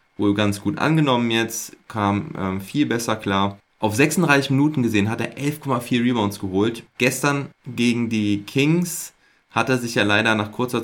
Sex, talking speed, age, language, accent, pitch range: male, 165 wpm, 20-39, German, German, 95-115 Hz